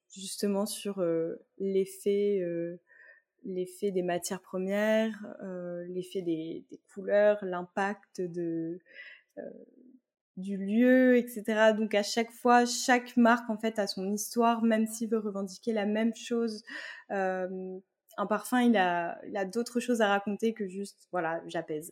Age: 20-39